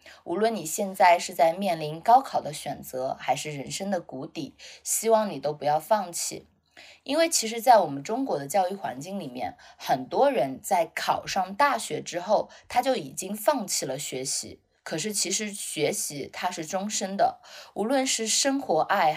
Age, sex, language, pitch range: 20-39, female, Chinese, 160-225 Hz